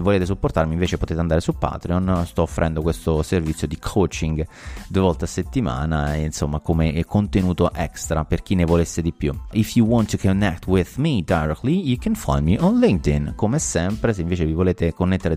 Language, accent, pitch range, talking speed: Italian, native, 80-100 Hz, 190 wpm